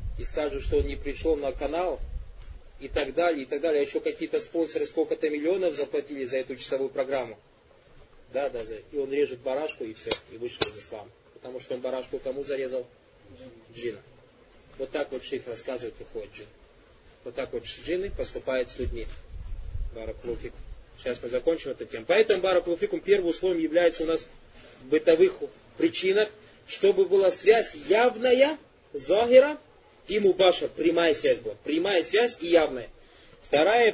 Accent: native